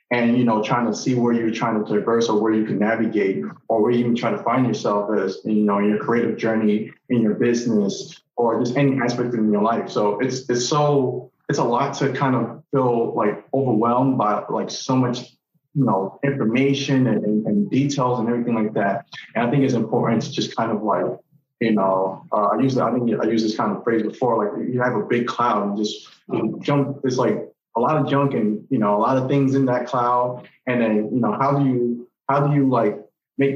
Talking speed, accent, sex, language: 240 wpm, American, male, English